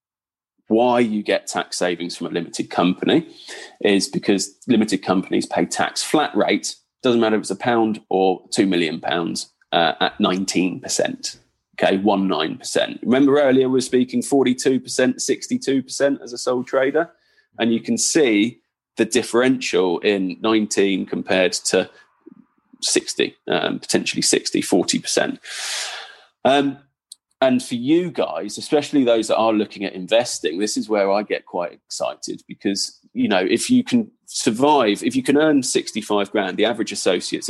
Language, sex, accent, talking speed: English, male, British, 150 wpm